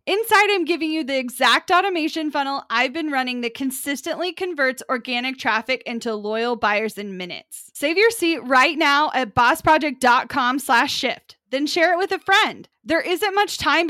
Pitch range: 220-295 Hz